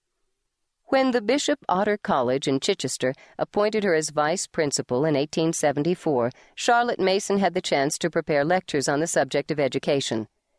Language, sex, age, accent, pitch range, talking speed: English, female, 50-69, American, 140-185 Hz, 145 wpm